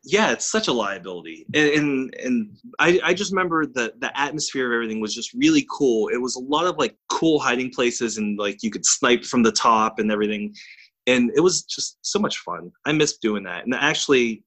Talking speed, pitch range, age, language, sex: 220 wpm, 105-160 Hz, 20-39, English, male